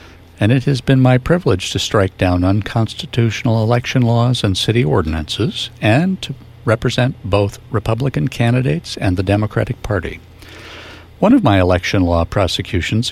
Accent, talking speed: American, 140 wpm